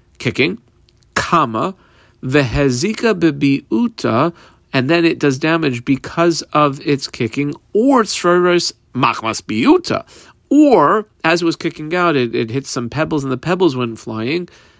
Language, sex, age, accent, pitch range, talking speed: English, male, 40-59, American, 120-165 Hz, 135 wpm